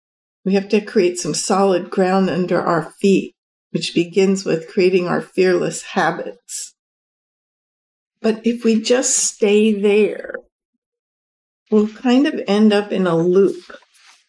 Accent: American